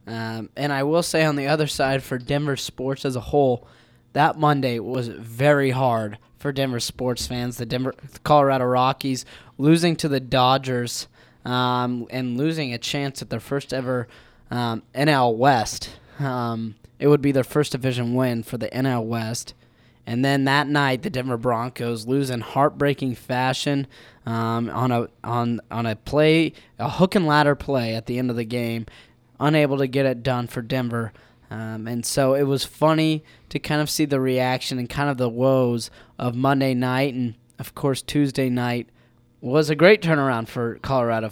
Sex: male